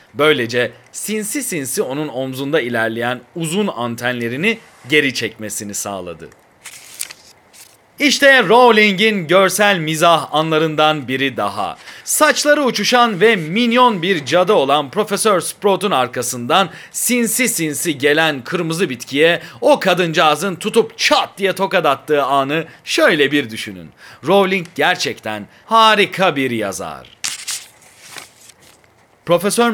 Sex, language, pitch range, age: male, Turkish, 120-190 Hz, 40-59